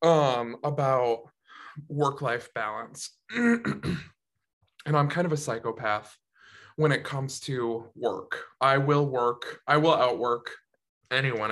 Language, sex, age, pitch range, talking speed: English, male, 20-39, 130-155 Hz, 115 wpm